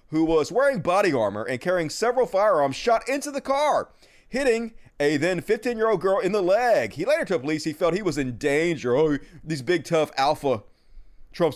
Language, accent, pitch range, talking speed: English, American, 125-185 Hz, 200 wpm